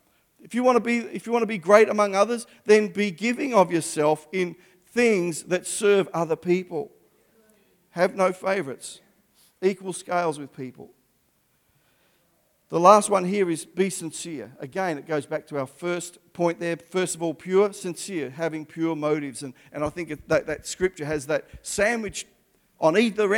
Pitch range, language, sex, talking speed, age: 160-205 Hz, English, male, 170 wpm, 50-69